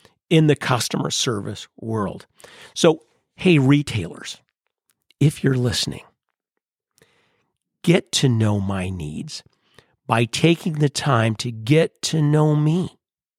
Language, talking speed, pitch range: English, 110 wpm, 115-165 Hz